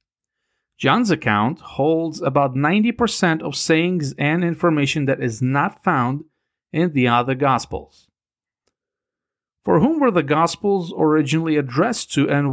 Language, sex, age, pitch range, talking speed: English, male, 40-59, 130-165 Hz, 125 wpm